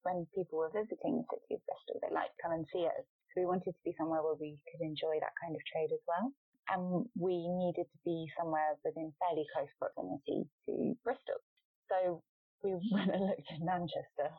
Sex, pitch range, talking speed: female, 160-250 Hz, 205 wpm